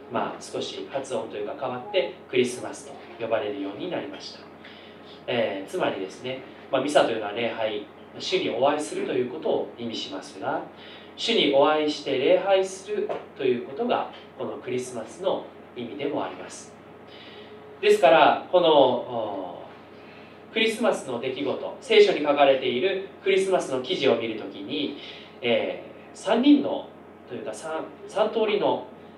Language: Japanese